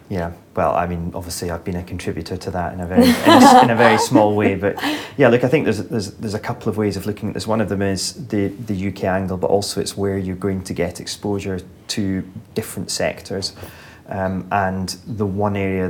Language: English